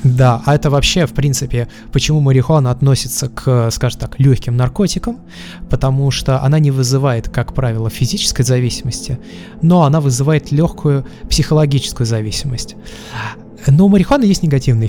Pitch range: 125-155 Hz